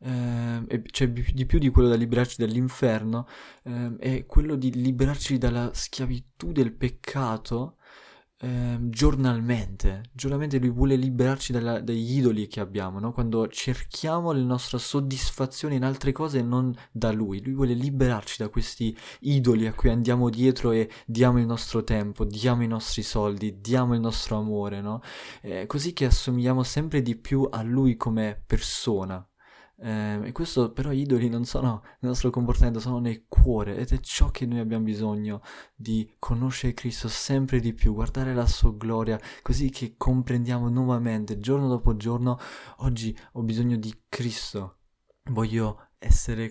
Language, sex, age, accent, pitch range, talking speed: Italian, male, 20-39, native, 110-130 Hz, 155 wpm